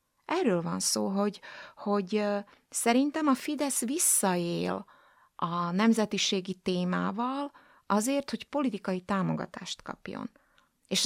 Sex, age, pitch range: female, 30-49, 185-245 Hz